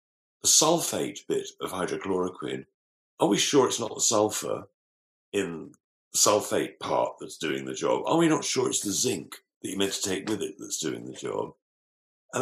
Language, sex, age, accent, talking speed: English, male, 50-69, British, 190 wpm